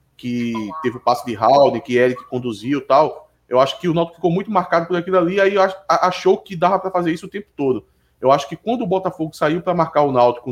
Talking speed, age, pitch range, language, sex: 240 wpm, 20-39, 155-210 Hz, Portuguese, male